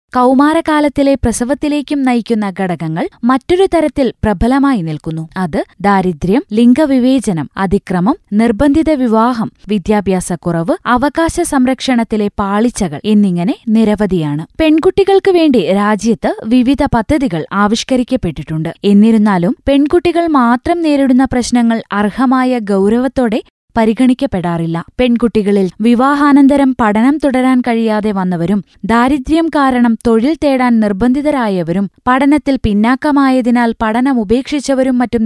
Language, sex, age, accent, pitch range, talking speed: Malayalam, female, 20-39, native, 210-275 Hz, 85 wpm